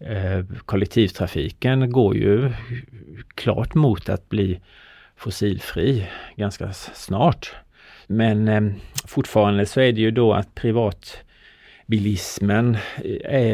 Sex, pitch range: male, 95-115 Hz